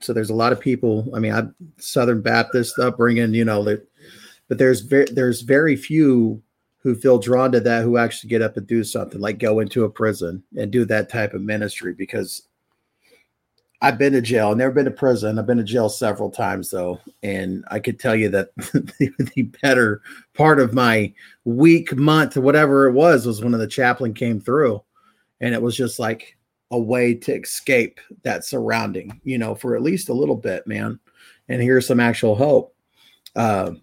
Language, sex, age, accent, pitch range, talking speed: English, male, 30-49, American, 110-130 Hz, 190 wpm